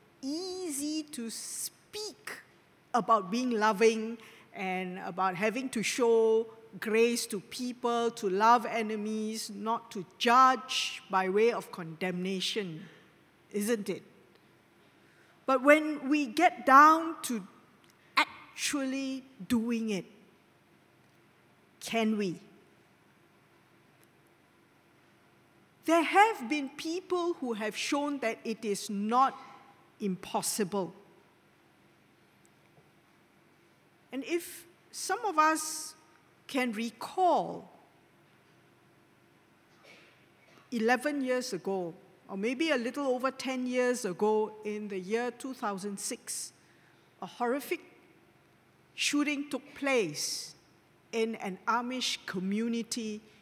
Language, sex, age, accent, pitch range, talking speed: English, female, 50-69, Malaysian, 205-270 Hz, 90 wpm